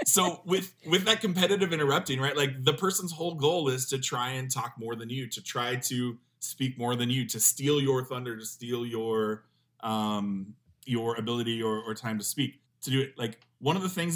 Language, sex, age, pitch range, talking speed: English, male, 20-39, 115-145 Hz, 210 wpm